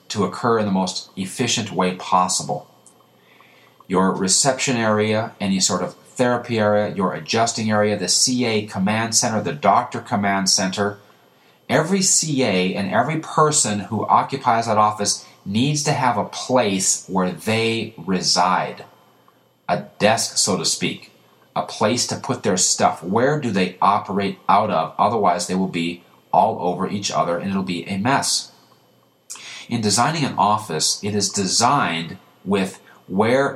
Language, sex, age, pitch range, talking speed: English, male, 30-49, 95-115 Hz, 150 wpm